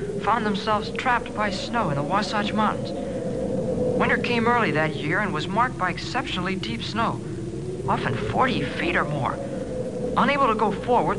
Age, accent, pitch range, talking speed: 60-79, American, 175-225 Hz, 160 wpm